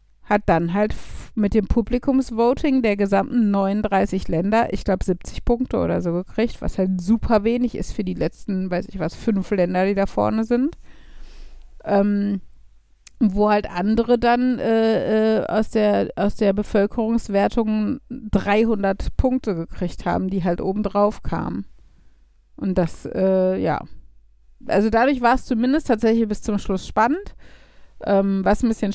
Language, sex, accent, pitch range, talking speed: German, female, German, 195-240 Hz, 150 wpm